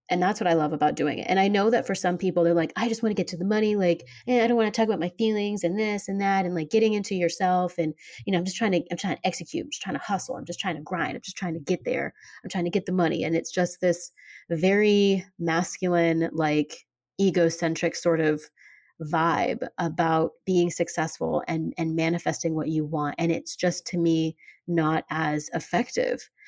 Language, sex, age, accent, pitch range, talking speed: English, female, 30-49, American, 165-210 Hz, 235 wpm